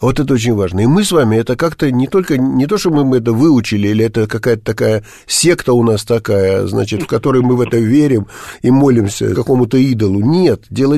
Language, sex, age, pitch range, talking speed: Russian, male, 50-69, 115-150 Hz, 215 wpm